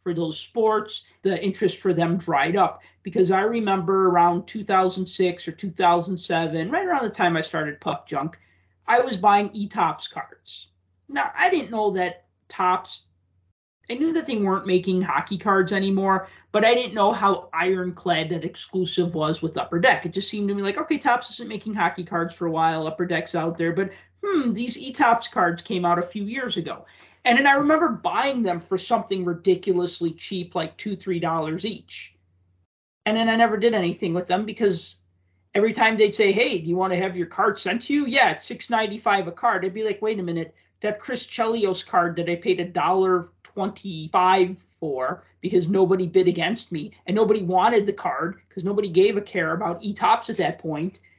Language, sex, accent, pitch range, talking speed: English, male, American, 175-215 Hz, 195 wpm